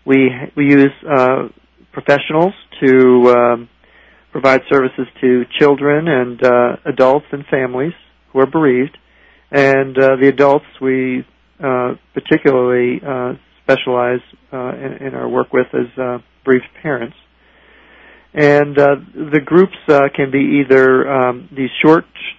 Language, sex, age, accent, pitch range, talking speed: English, male, 40-59, American, 130-145 Hz, 130 wpm